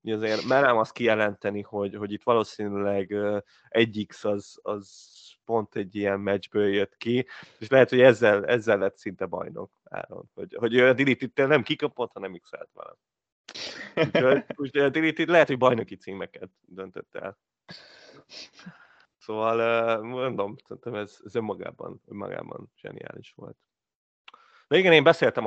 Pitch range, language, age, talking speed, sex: 100-125 Hz, Hungarian, 20-39, 145 wpm, male